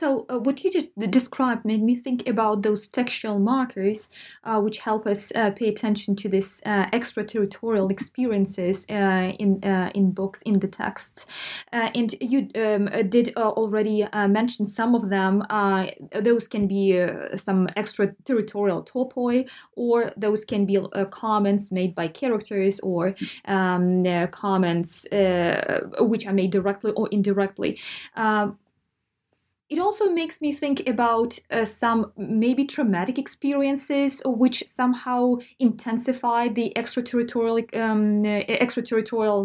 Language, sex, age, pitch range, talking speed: English, female, 20-39, 200-240 Hz, 140 wpm